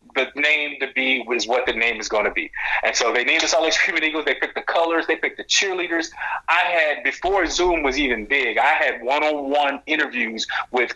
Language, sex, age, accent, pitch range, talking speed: English, male, 30-49, American, 120-150 Hz, 220 wpm